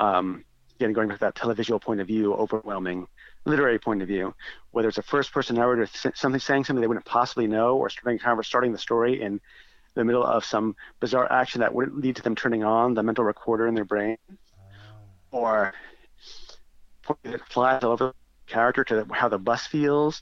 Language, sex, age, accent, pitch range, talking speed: English, male, 40-59, American, 110-140 Hz, 195 wpm